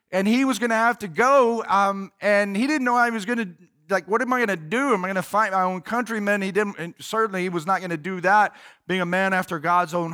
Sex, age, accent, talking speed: male, 40-59, American, 290 wpm